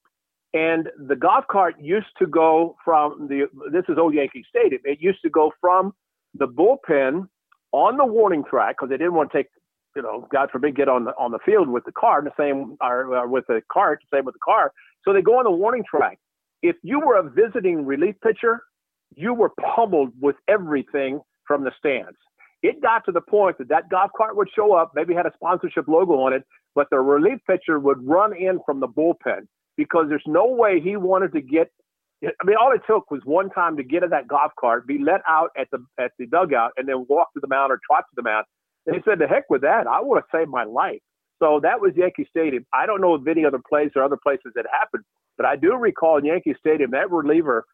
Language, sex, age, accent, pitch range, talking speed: English, male, 50-69, American, 140-220 Hz, 235 wpm